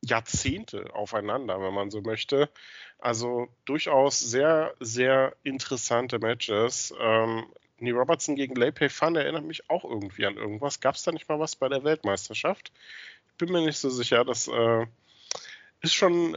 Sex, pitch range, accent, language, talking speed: male, 115-140 Hz, German, German, 160 wpm